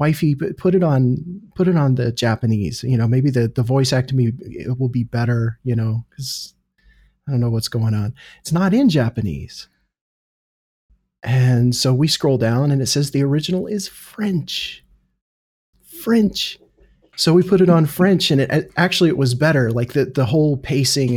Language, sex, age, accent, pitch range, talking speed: English, male, 30-49, American, 120-155 Hz, 180 wpm